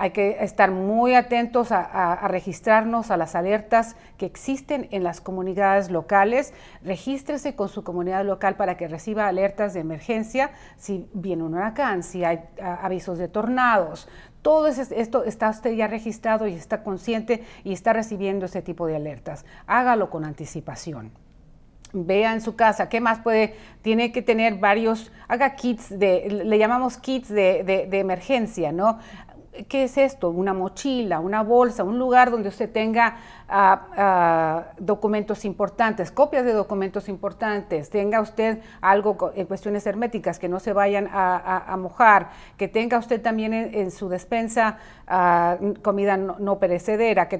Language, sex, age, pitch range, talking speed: English, female, 40-59, 185-225 Hz, 160 wpm